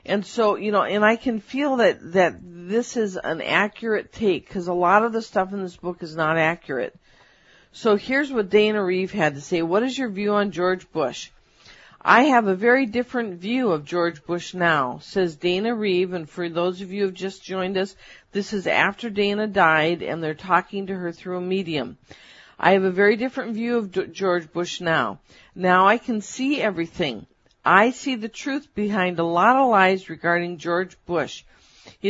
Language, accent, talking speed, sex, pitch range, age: English, American, 200 wpm, female, 175-225 Hz, 50-69